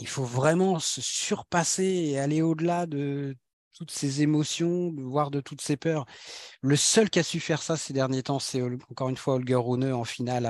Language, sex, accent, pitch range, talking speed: French, male, French, 125-155 Hz, 200 wpm